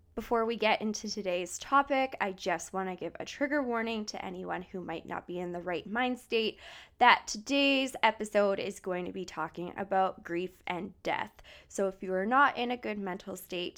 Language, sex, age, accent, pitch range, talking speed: English, female, 20-39, American, 175-225 Hz, 205 wpm